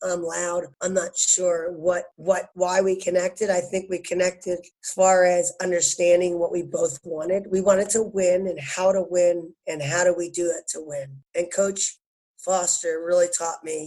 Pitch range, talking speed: 175-200 Hz, 190 wpm